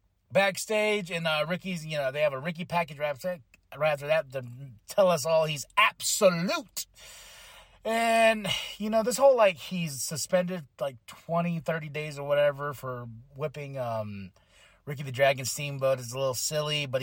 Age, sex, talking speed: 30-49, male, 160 wpm